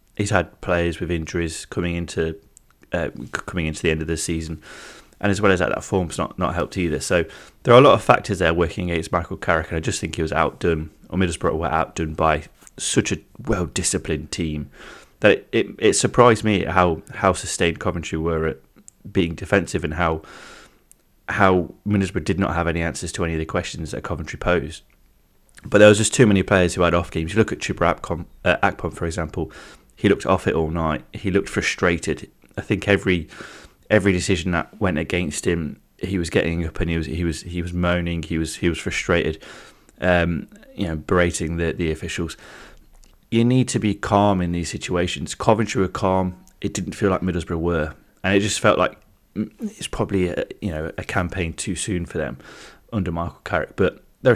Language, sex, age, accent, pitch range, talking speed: English, male, 30-49, British, 80-100 Hz, 200 wpm